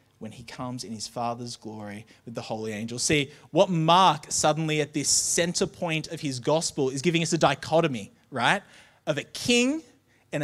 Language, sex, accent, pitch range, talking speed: English, male, Australian, 115-155 Hz, 185 wpm